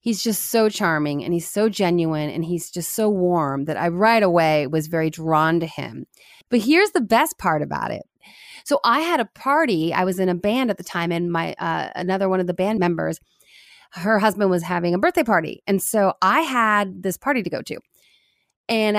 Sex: female